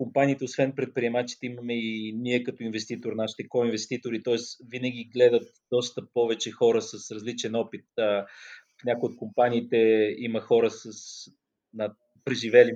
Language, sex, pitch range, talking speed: Bulgarian, male, 115-140 Hz, 130 wpm